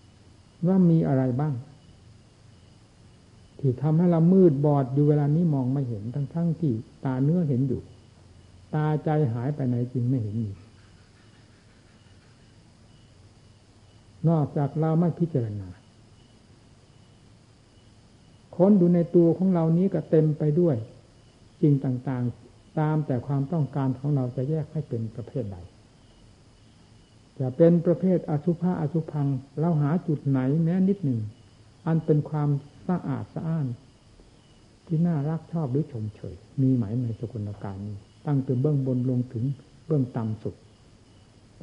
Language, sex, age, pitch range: Thai, male, 60-79, 110-155 Hz